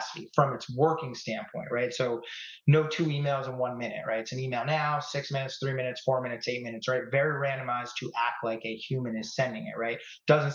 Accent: American